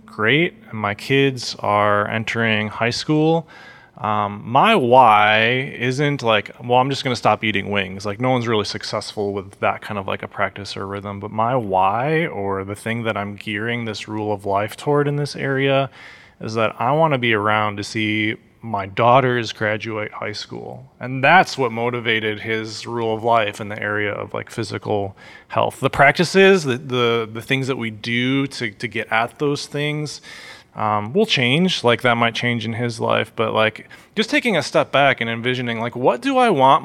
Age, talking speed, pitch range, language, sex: 20-39, 195 wpm, 105-130 Hz, English, male